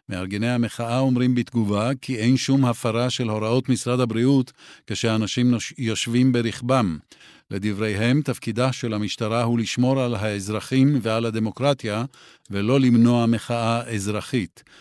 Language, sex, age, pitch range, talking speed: Hebrew, male, 50-69, 110-125 Hz, 120 wpm